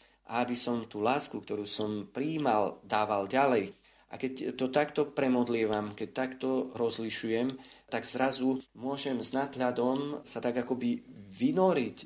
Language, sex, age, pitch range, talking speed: Slovak, male, 30-49, 105-130 Hz, 130 wpm